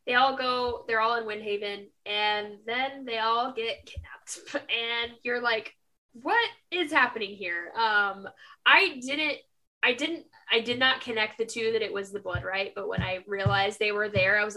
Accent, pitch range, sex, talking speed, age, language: American, 200-270 Hz, female, 190 wpm, 10-29, English